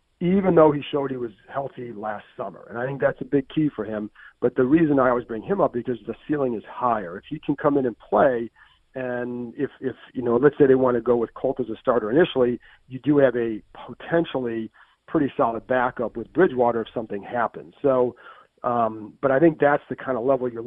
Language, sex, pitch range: English, male, 115-140 Hz